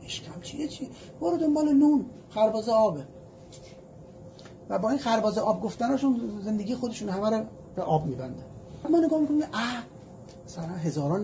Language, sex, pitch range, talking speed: Persian, male, 170-260 Hz, 145 wpm